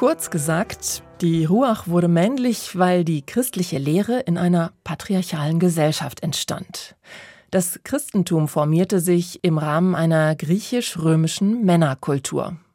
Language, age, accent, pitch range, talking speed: German, 30-49, German, 155-200 Hz, 115 wpm